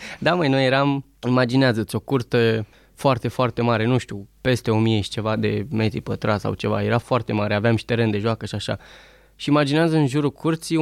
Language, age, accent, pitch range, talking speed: Romanian, 20-39, native, 120-160 Hz, 200 wpm